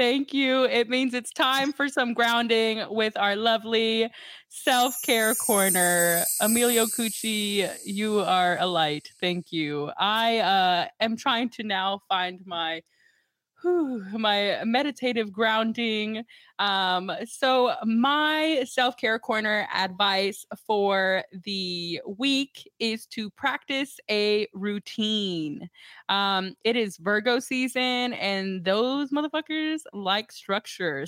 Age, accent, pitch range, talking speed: 20-39, American, 195-240 Hz, 110 wpm